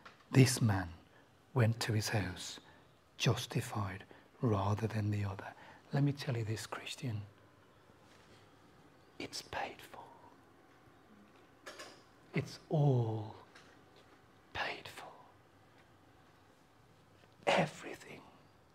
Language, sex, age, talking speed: English, male, 60-79, 80 wpm